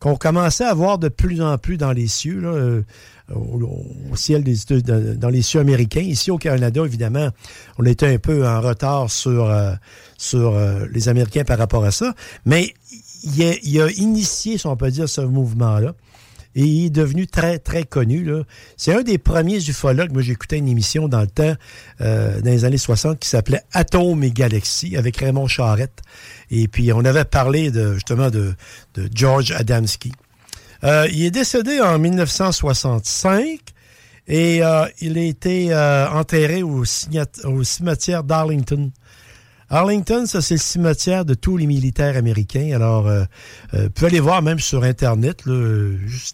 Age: 60-79